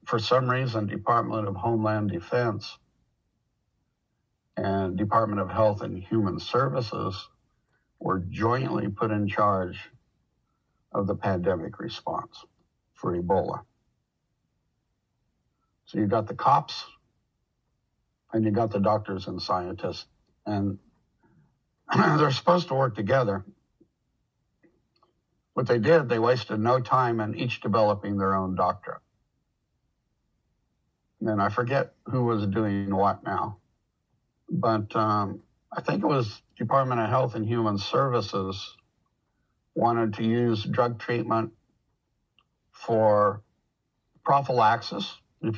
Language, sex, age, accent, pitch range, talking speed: English, male, 60-79, American, 105-120 Hz, 110 wpm